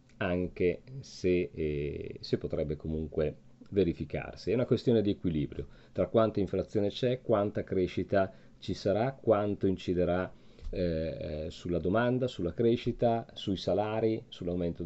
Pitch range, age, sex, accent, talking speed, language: 85-110 Hz, 40-59, male, native, 115 wpm, Italian